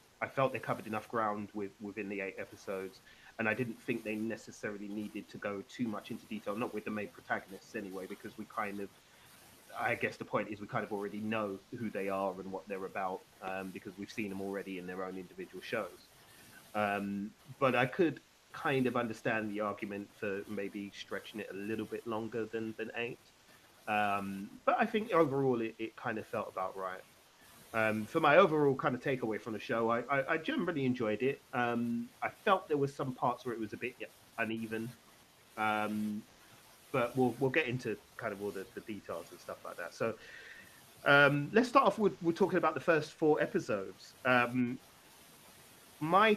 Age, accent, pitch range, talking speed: 30-49, British, 105-135 Hz, 200 wpm